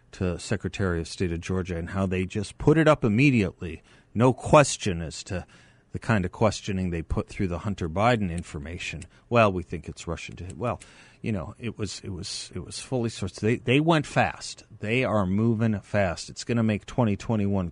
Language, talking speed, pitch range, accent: English, 200 wpm, 90-110 Hz, American